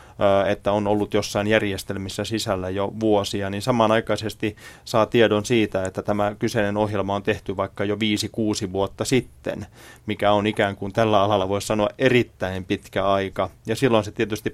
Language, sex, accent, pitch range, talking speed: Finnish, male, native, 100-115 Hz, 165 wpm